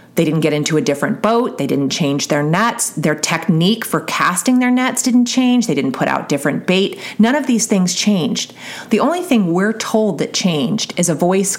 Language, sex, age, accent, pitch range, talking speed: English, female, 30-49, American, 160-210 Hz, 210 wpm